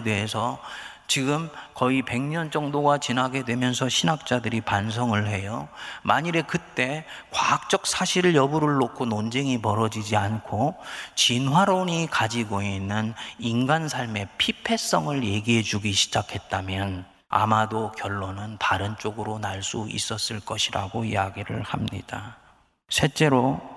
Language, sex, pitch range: Korean, male, 110-135 Hz